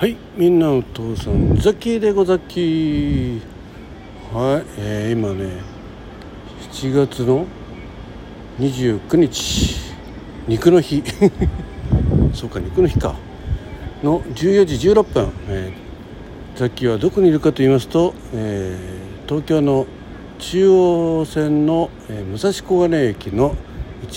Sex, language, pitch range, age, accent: male, Japanese, 100-165 Hz, 60-79, native